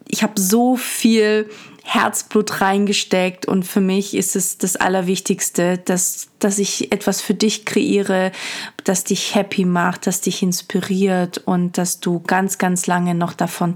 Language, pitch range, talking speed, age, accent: German, 185-205 Hz, 155 wpm, 20-39, German